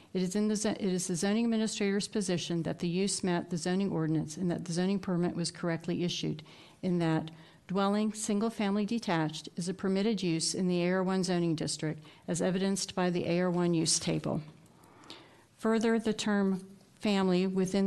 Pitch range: 175-200 Hz